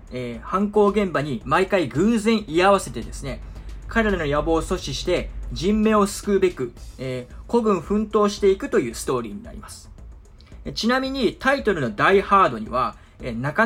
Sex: male